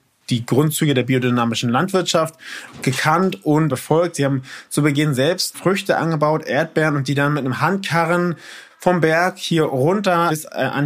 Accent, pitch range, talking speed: German, 125-155 Hz, 155 wpm